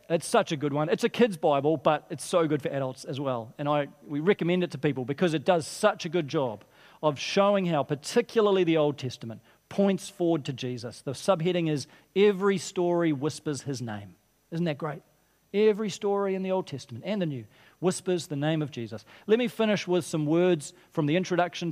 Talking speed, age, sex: 210 wpm, 40-59, male